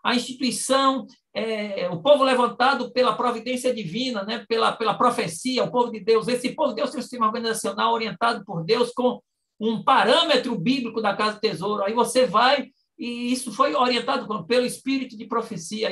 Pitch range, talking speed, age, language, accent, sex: 210-255 Hz, 175 wpm, 50-69, Portuguese, Brazilian, male